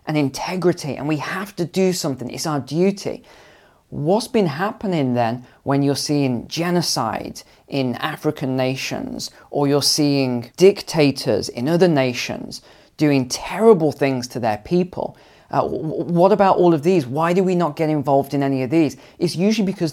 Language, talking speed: English, 165 wpm